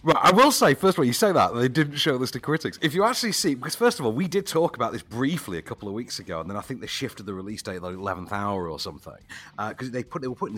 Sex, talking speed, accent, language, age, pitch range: male, 325 wpm, British, English, 40-59, 90-145 Hz